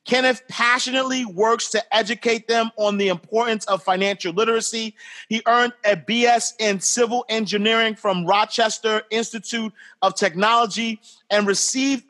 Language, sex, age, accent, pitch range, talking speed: English, male, 30-49, American, 205-245 Hz, 130 wpm